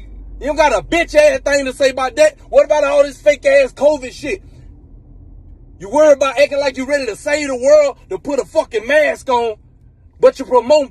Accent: American